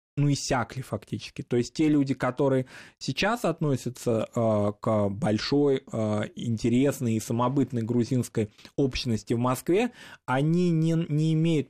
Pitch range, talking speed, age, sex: 115-145 Hz, 135 wpm, 20-39, male